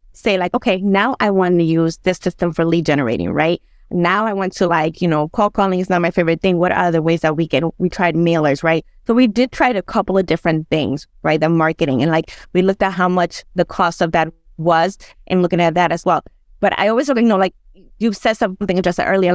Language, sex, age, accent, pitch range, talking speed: English, female, 20-39, American, 170-205 Hz, 250 wpm